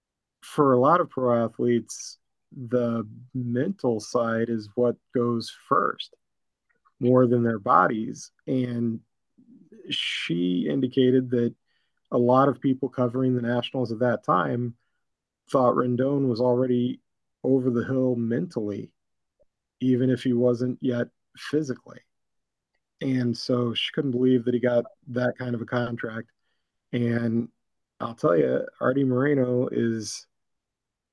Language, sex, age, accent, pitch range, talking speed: English, male, 40-59, American, 115-130 Hz, 125 wpm